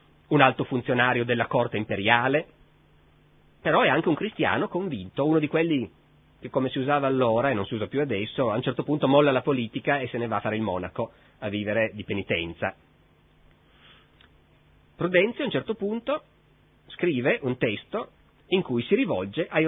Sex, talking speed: male, 175 wpm